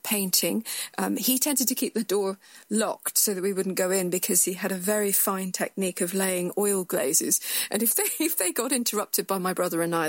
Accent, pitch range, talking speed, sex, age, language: British, 185-230 Hz, 225 wpm, female, 40-59, English